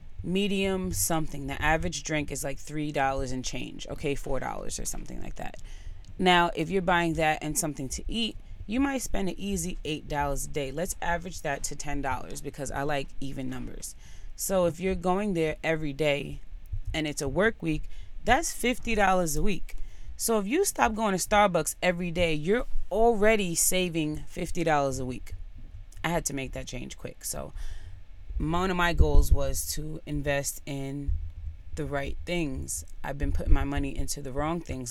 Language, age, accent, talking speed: English, 30-49, American, 185 wpm